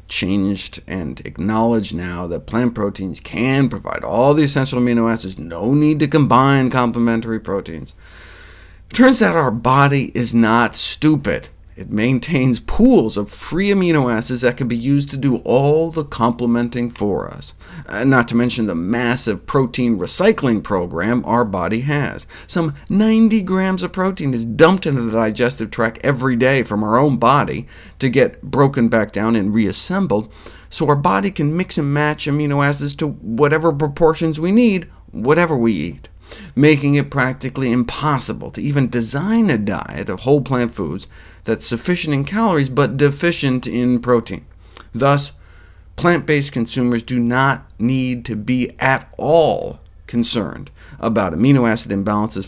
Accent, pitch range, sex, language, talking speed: American, 110-145 Hz, male, English, 155 wpm